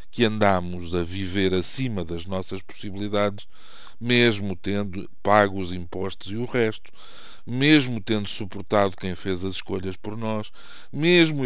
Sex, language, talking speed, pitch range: male, Portuguese, 135 wpm, 95-125 Hz